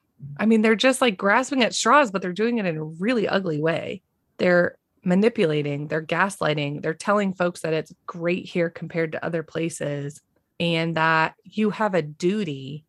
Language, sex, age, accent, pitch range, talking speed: English, female, 30-49, American, 150-220 Hz, 175 wpm